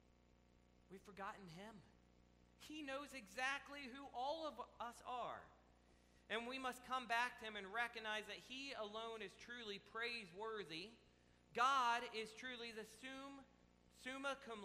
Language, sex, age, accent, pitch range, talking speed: English, male, 40-59, American, 165-230 Hz, 135 wpm